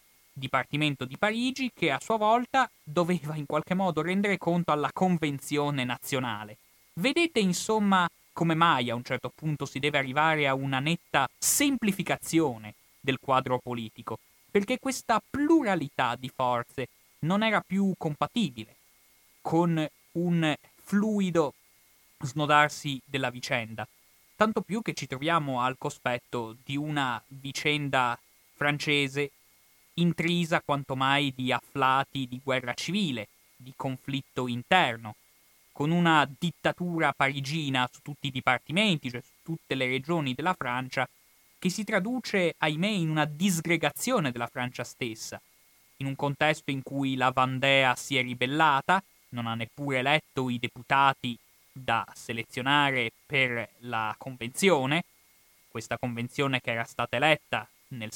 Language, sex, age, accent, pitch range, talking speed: Italian, male, 20-39, native, 125-170 Hz, 130 wpm